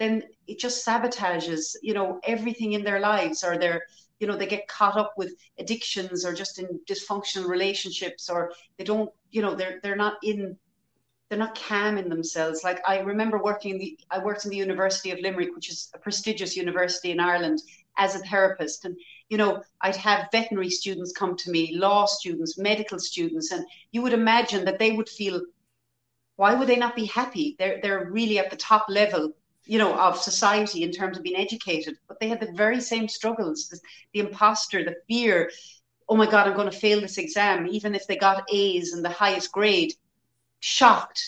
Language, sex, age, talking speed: English, female, 40-59, 200 wpm